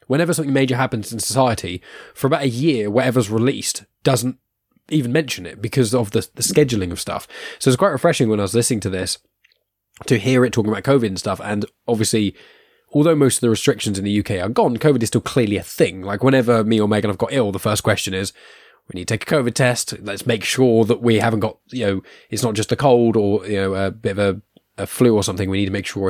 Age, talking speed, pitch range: 10-29, 250 wpm, 105-135 Hz